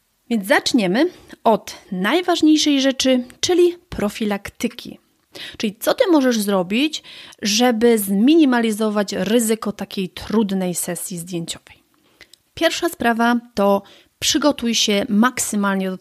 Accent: native